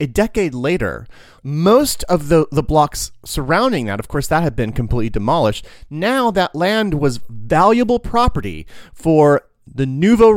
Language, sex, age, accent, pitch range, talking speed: English, male, 30-49, American, 130-200 Hz, 150 wpm